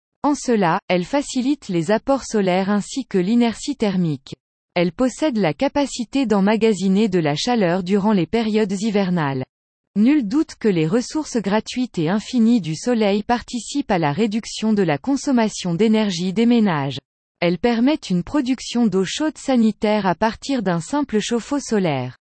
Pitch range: 185-250 Hz